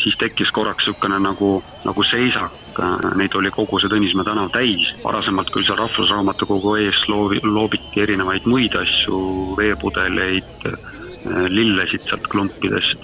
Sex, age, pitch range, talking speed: male, 30-49, 95-105 Hz, 130 wpm